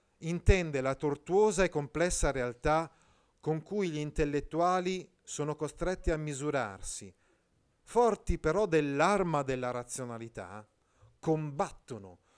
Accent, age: native, 40-59